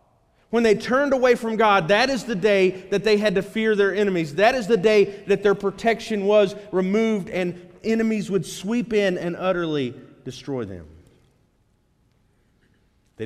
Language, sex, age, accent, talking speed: English, male, 40-59, American, 165 wpm